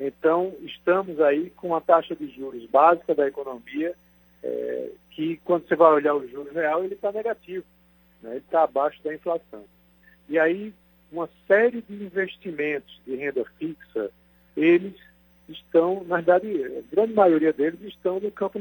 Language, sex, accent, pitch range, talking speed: Portuguese, male, Brazilian, 135-185 Hz, 155 wpm